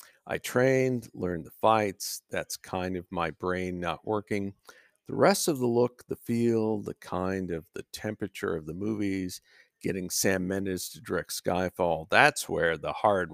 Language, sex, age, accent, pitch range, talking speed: English, male, 50-69, American, 90-125 Hz, 165 wpm